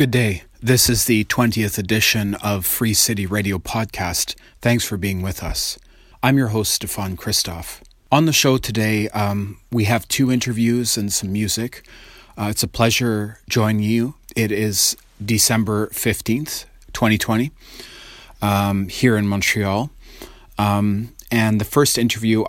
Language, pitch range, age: English, 100-115 Hz, 30-49